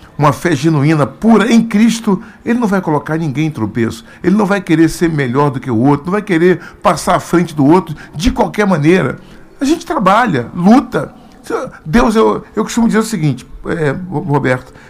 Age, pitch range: 50-69, 155-220 Hz